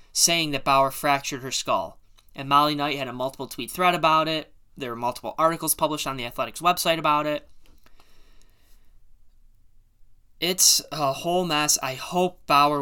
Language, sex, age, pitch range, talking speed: English, male, 10-29, 130-155 Hz, 155 wpm